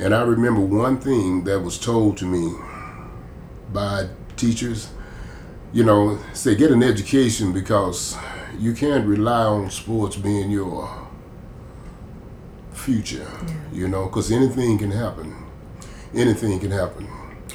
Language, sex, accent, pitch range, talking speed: English, male, American, 100-110 Hz, 125 wpm